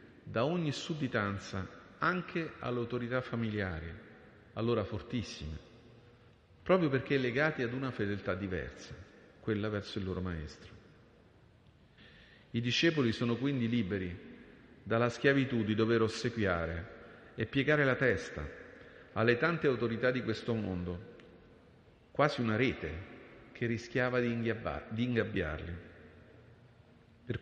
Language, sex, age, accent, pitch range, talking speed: Italian, male, 40-59, native, 105-125 Hz, 105 wpm